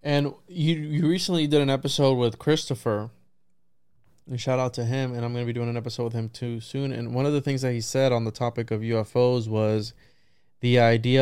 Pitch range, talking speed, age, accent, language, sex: 115-130 Hz, 225 wpm, 20-39, American, English, male